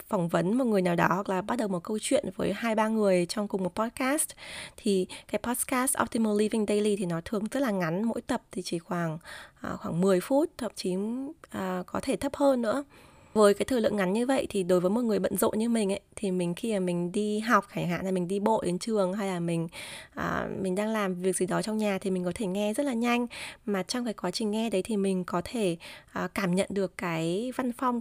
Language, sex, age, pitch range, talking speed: Vietnamese, female, 20-39, 190-245 Hz, 255 wpm